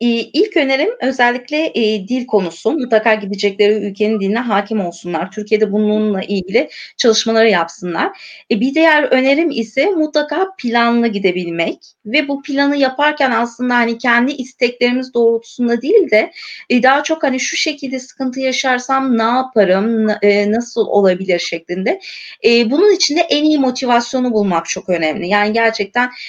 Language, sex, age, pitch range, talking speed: Turkish, female, 30-49, 210-260 Hz, 140 wpm